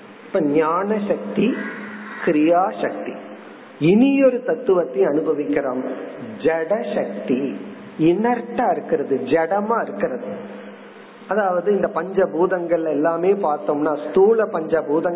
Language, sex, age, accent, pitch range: Tamil, male, 40-59, native, 170-230 Hz